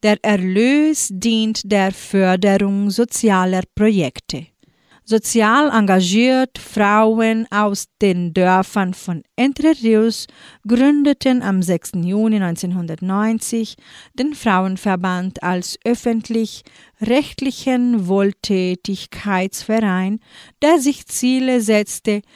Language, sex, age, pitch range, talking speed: German, female, 40-59, 195-235 Hz, 80 wpm